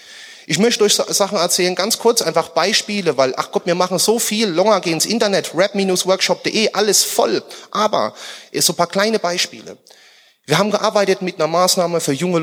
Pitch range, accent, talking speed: 150-210 Hz, German, 180 wpm